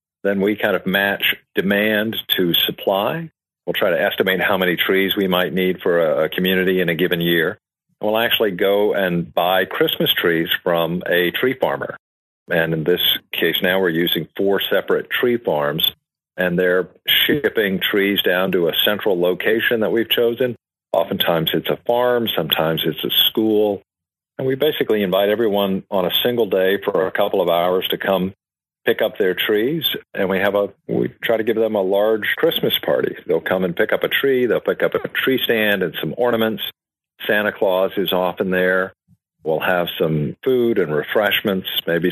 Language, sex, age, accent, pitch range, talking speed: English, male, 50-69, American, 90-110 Hz, 180 wpm